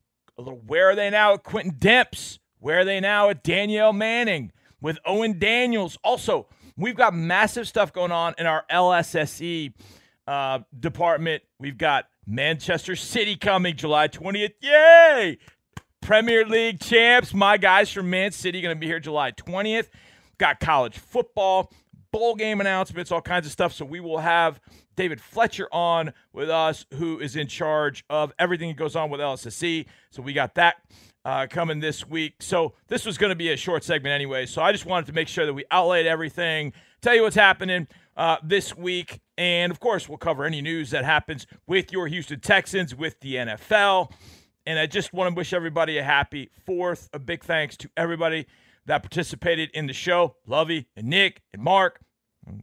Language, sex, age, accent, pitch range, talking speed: English, male, 40-59, American, 150-195 Hz, 185 wpm